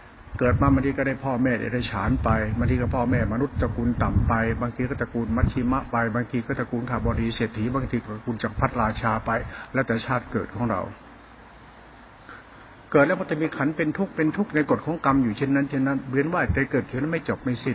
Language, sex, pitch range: Thai, male, 110-135 Hz